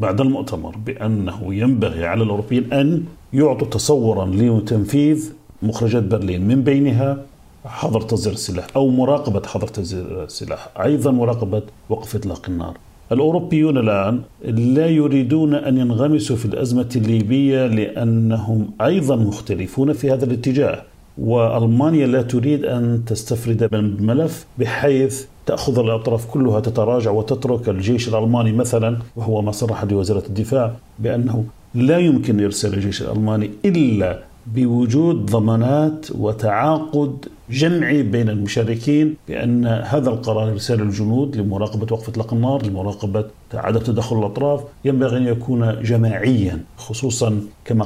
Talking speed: 120 wpm